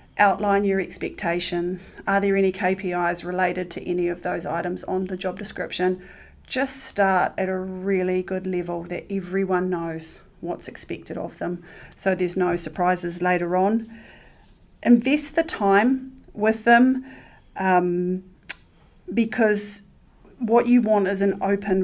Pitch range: 180-215 Hz